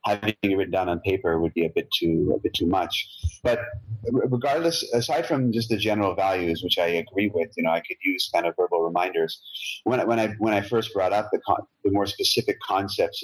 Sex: male